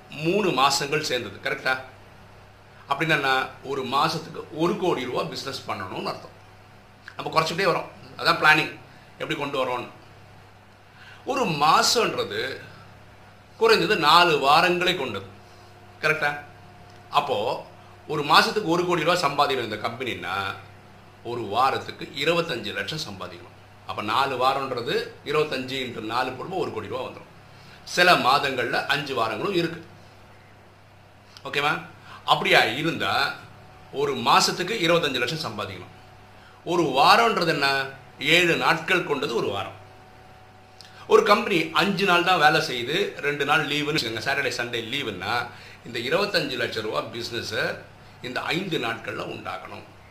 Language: Tamil